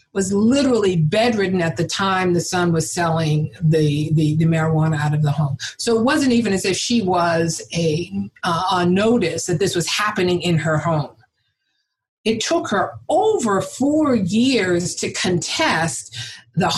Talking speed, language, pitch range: 165 wpm, English, 165-210 Hz